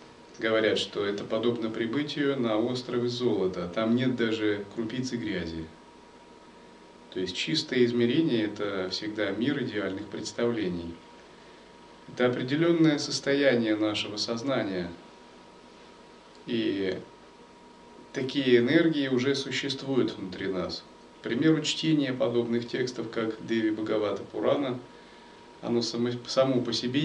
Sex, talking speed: male, 110 wpm